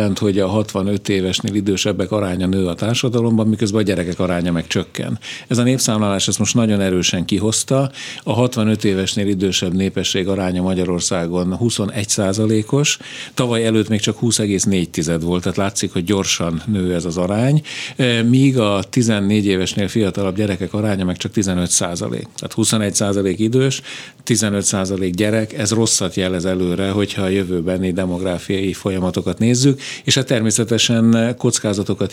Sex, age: male, 50-69